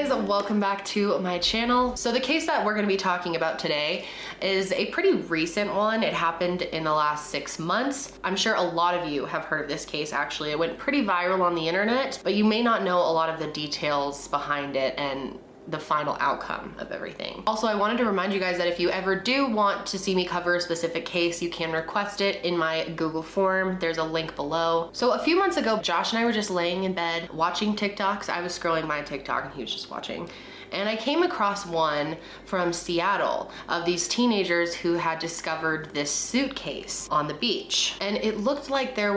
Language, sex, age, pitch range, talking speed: English, female, 20-39, 160-205 Hz, 220 wpm